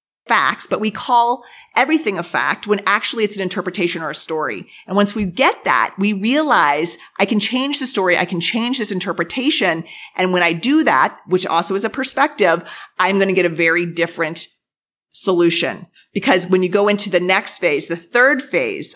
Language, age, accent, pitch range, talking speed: English, 30-49, American, 175-235 Hz, 195 wpm